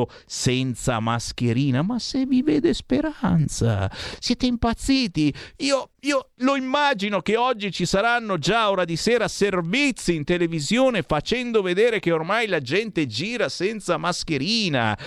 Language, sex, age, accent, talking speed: Italian, male, 50-69, native, 130 wpm